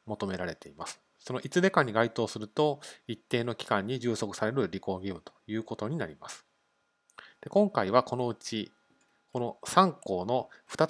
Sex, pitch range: male, 105-150 Hz